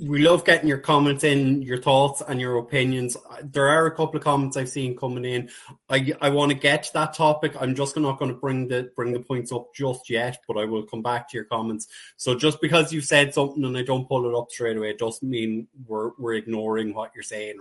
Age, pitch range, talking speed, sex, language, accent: 20-39, 115-150 Hz, 250 wpm, male, English, Irish